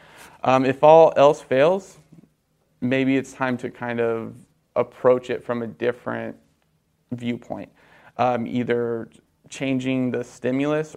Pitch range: 120-135 Hz